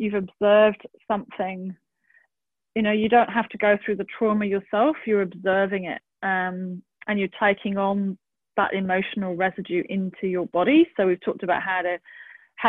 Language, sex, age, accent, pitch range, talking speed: English, female, 30-49, British, 190-225 Hz, 155 wpm